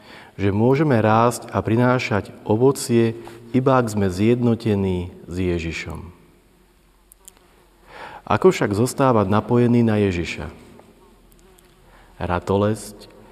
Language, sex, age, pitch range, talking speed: Slovak, male, 30-49, 95-115 Hz, 85 wpm